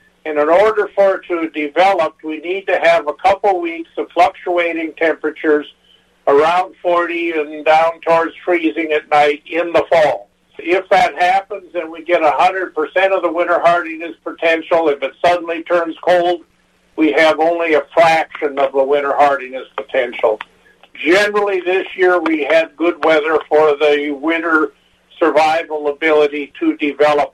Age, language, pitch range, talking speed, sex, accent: 50-69, English, 155-180 Hz, 150 wpm, male, American